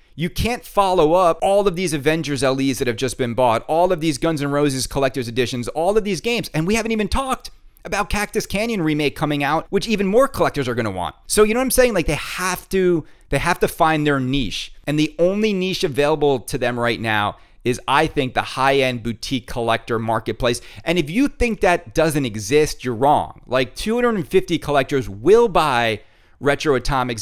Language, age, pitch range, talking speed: English, 30-49, 130-195 Hz, 205 wpm